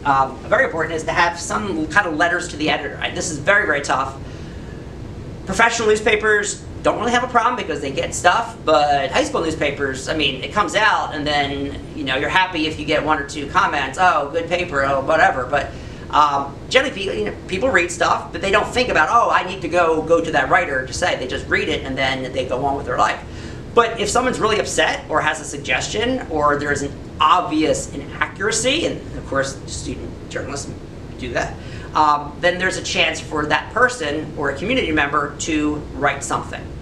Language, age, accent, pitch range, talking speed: English, 40-59, American, 140-175 Hz, 205 wpm